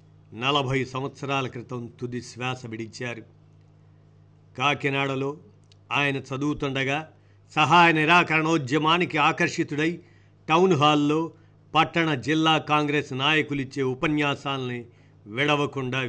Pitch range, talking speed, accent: 125-150 Hz, 75 wpm, native